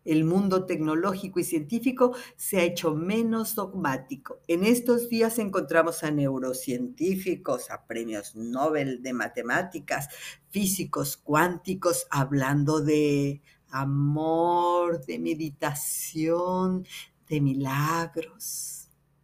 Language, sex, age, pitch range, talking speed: Spanish, female, 50-69, 150-195 Hz, 95 wpm